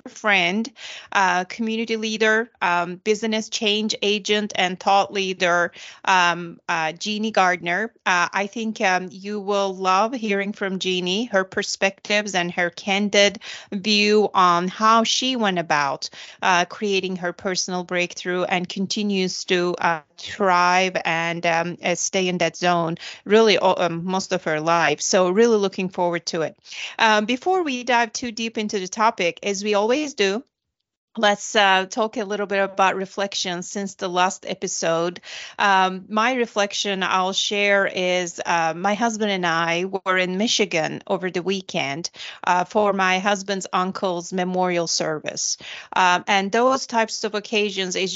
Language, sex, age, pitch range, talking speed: English, female, 30-49, 180-210 Hz, 150 wpm